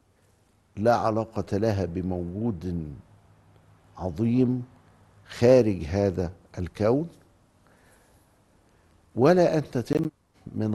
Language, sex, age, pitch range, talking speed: Arabic, male, 50-69, 95-120 Hz, 65 wpm